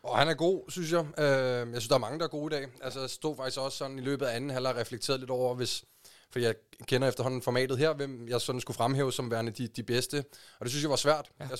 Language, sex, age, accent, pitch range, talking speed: Danish, male, 20-39, native, 120-140 Hz, 275 wpm